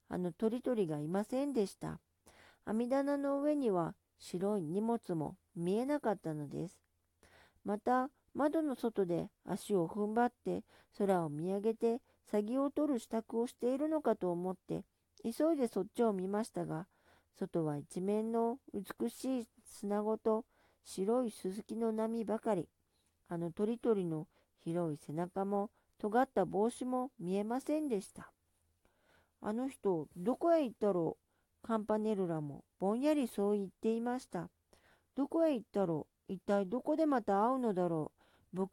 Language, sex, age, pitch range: Japanese, female, 40-59, 185-250 Hz